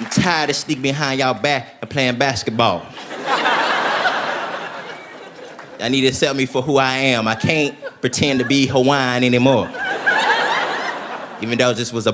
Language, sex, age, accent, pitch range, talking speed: English, male, 30-49, American, 125-150 Hz, 155 wpm